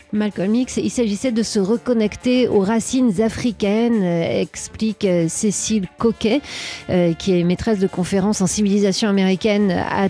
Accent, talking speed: French, 135 wpm